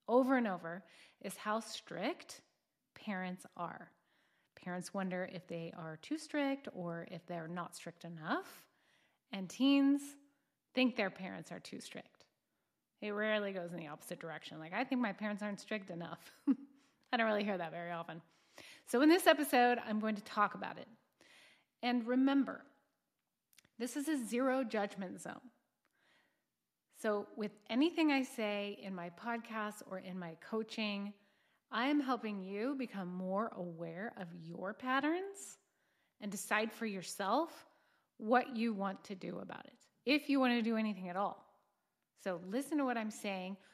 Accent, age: American, 30-49